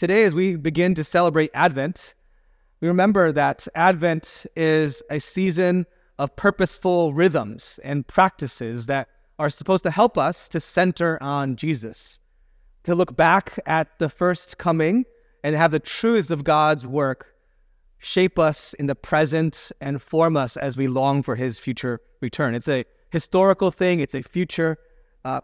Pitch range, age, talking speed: 140-180 Hz, 30-49, 155 wpm